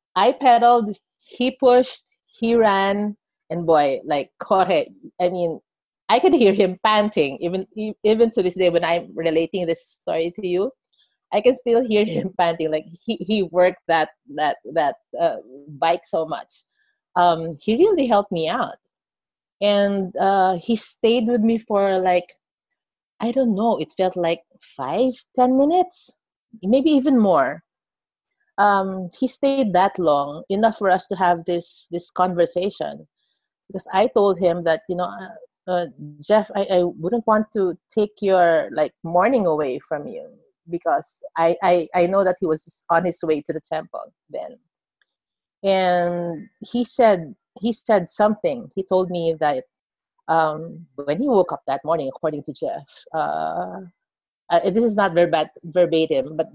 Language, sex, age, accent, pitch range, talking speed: English, female, 30-49, Filipino, 170-225 Hz, 160 wpm